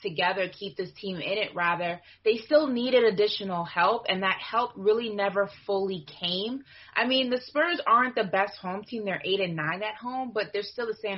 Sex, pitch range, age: female, 185-235 Hz, 20-39